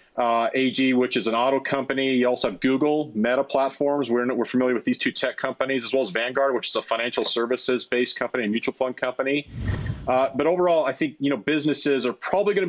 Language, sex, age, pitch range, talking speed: English, male, 30-49, 125-145 Hz, 220 wpm